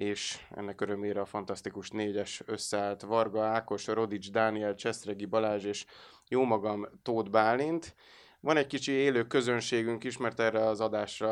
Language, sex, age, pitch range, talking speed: Hungarian, male, 30-49, 105-120 Hz, 155 wpm